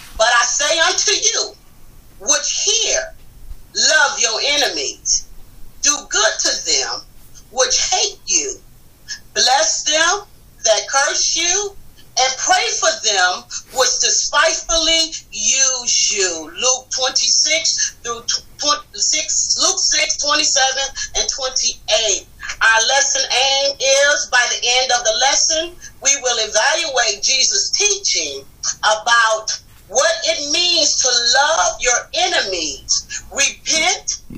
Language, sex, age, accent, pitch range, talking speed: English, female, 40-59, American, 240-330 Hz, 110 wpm